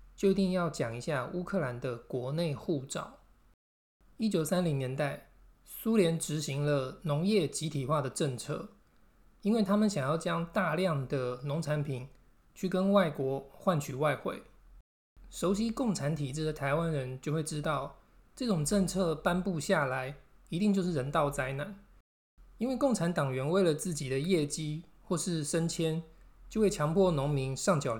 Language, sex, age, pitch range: Chinese, male, 20-39, 140-190 Hz